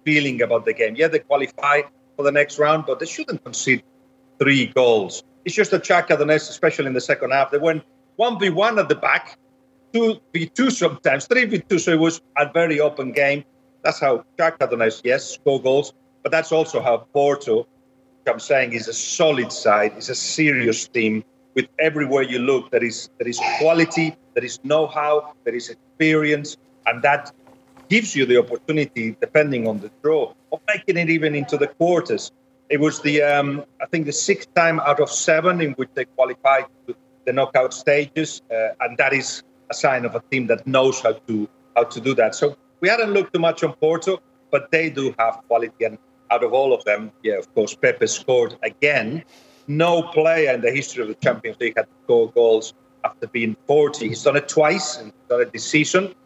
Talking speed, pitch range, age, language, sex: 195 wpm, 130-165 Hz, 40-59, English, male